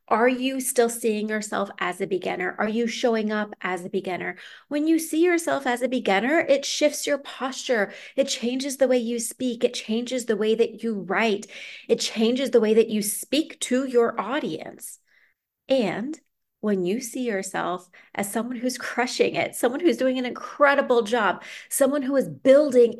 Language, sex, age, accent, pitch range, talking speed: English, female, 30-49, American, 215-265 Hz, 180 wpm